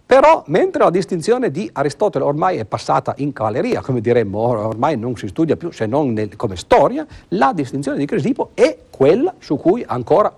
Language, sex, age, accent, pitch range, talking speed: Italian, male, 50-69, native, 120-175 Hz, 180 wpm